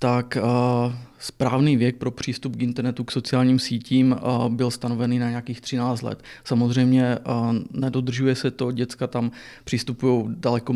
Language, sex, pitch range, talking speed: Czech, male, 120-130 Hz, 155 wpm